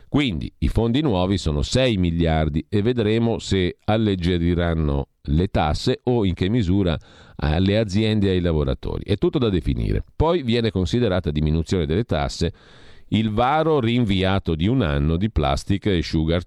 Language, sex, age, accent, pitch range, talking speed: Italian, male, 50-69, native, 80-110 Hz, 155 wpm